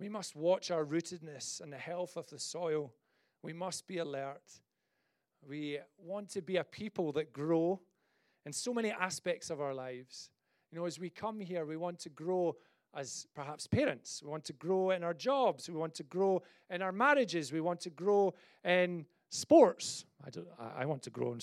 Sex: male